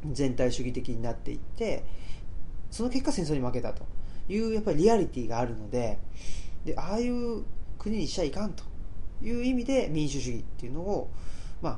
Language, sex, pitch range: Japanese, male, 115-195 Hz